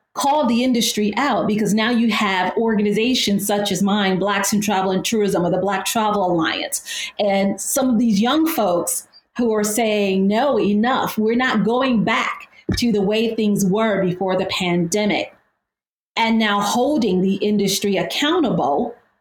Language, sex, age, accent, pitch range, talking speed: English, female, 40-59, American, 195-235 Hz, 160 wpm